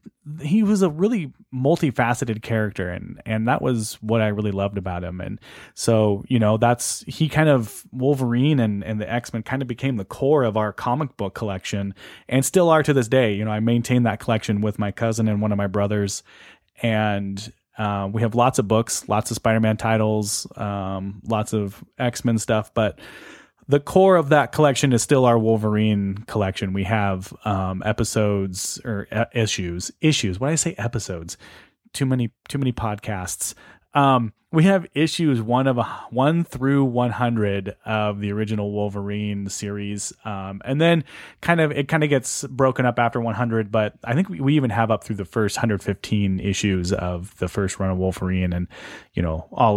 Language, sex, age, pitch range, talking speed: English, male, 30-49, 100-130 Hz, 185 wpm